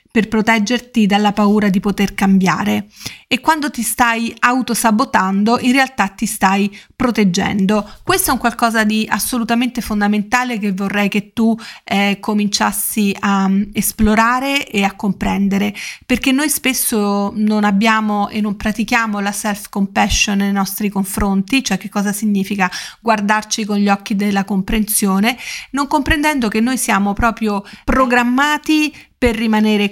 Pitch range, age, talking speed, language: 205-245 Hz, 30-49, 135 wpm, Italian